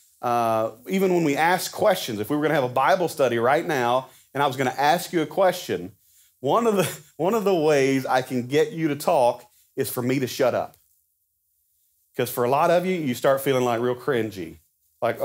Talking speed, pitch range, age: 230 wpm, 115-155 Hz, 30-49